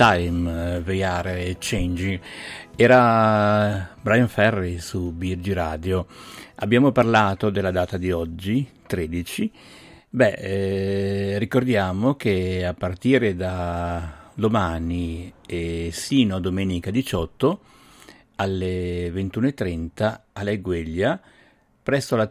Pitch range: 90-110 Hz